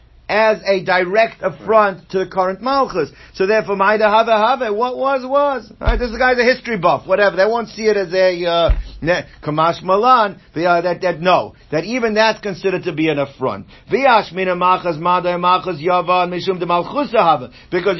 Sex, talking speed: male, 130 wpm